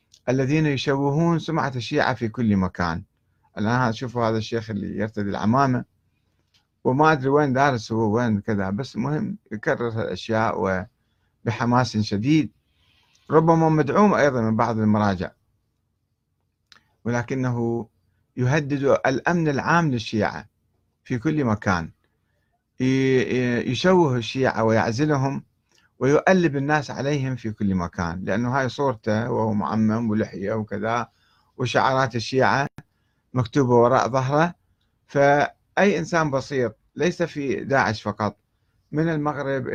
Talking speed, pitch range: 105 wpm, 105-140 Hz